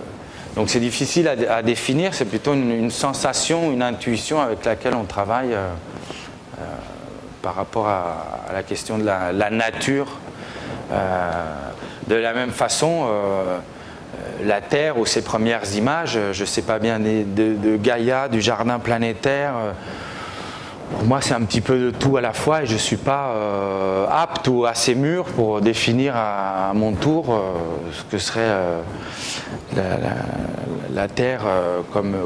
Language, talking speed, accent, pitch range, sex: French, 165 wpm, French, 100-130 Hz, male